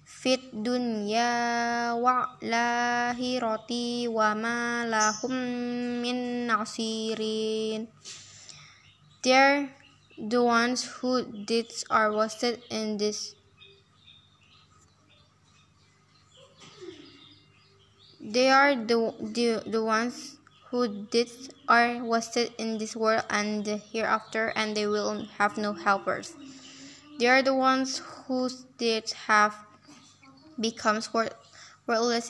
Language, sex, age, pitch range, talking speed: English, female, 10-29, 220-245 Hz, 80 wpm